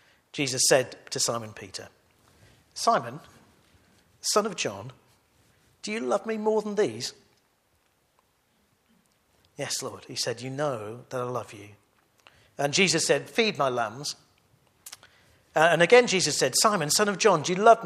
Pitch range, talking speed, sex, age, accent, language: 120-165 Hz, 145 wpm, male, 50-69, British, English